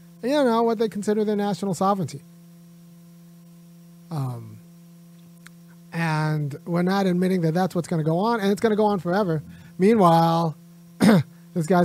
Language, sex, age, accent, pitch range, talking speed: English, male, 30-49, American, 155-175 Hz, 150 wpm